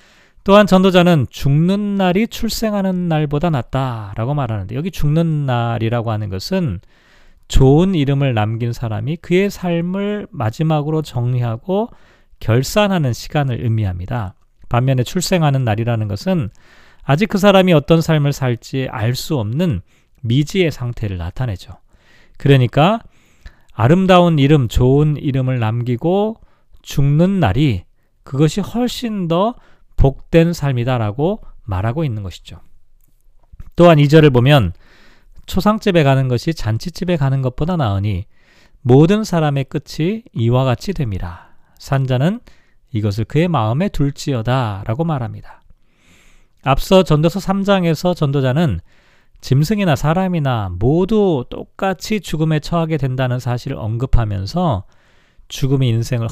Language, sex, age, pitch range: Korean, male, 40-59, 115-170 Hz